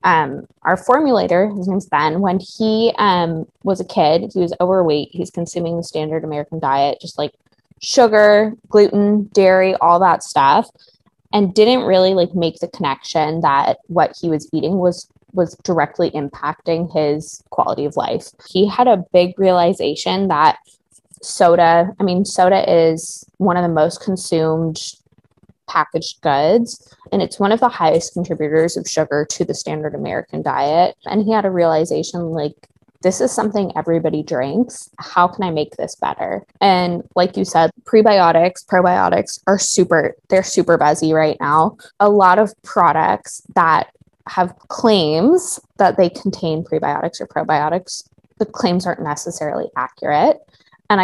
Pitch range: 160-195 Hz